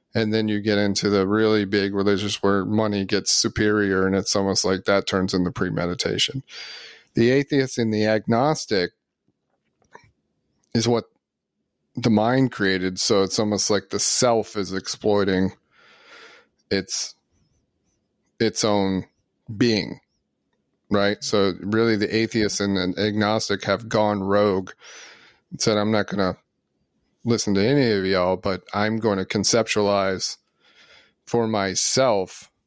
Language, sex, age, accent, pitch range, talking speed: English, male, 30-49, American, 100-115 Hz, 130 wpm